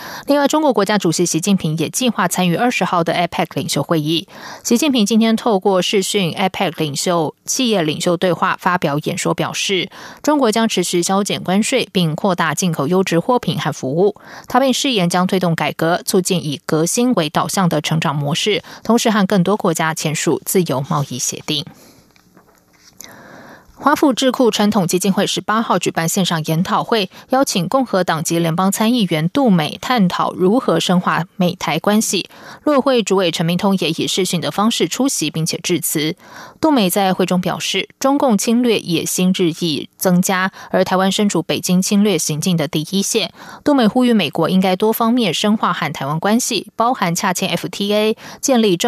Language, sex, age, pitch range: German, female, 20-39, 170-215 Hz